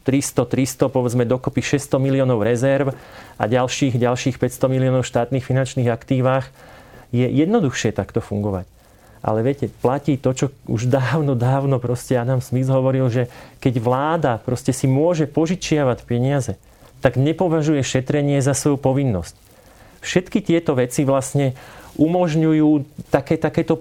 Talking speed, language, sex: 130 wpm, Slovak, male